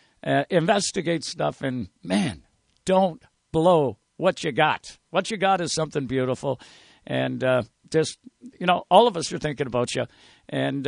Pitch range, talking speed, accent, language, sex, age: 150-220 Hz, 160 wpm, American, English, male, 60-79